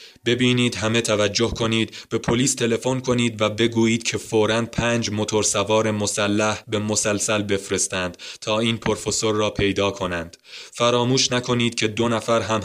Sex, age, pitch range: male, 20-39, 90-110 Hz